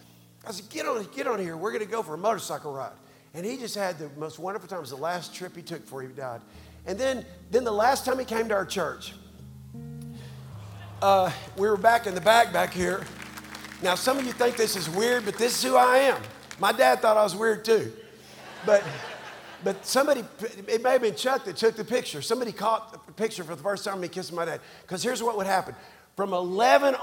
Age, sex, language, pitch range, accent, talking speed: 50-69, male, English, 150-225 Hz, American, 235 wpm